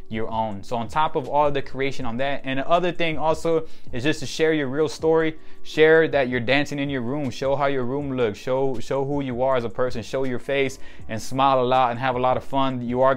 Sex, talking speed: male, 265 wpm